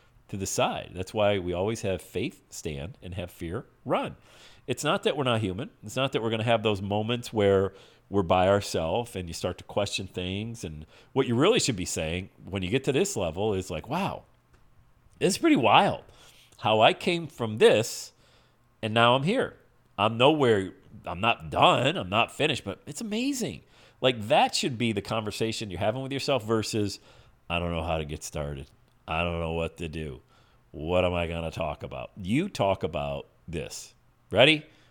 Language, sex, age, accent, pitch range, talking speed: English, male, 40-59, American, 90-125 Hz, 200 wpm